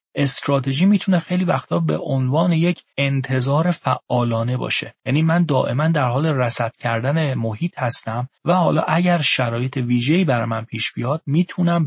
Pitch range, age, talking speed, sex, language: 115-150 Hz, 40-59, 145 wpm, male, Persian